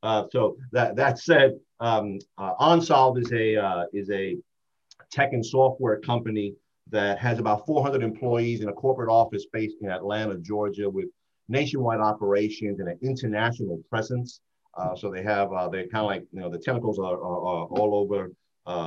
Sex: male